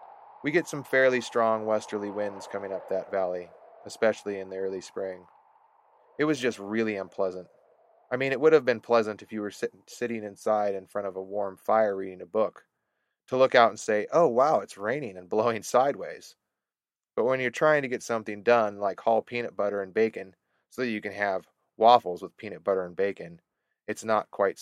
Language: English